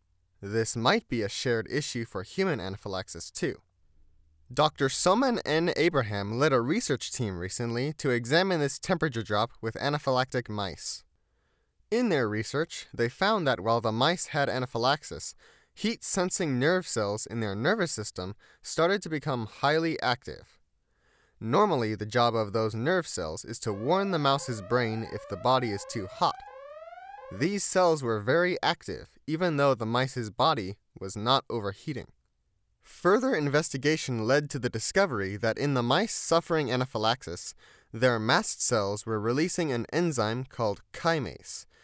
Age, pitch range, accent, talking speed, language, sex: 20-39, 110-155 Hz, American, 150 wpm, English, male